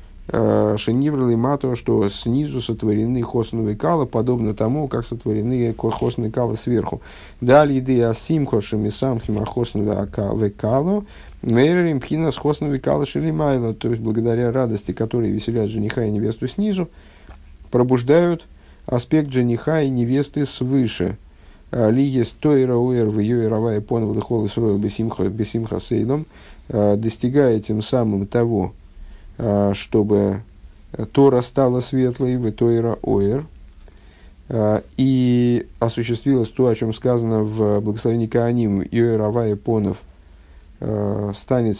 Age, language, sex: 50-69, Russian, male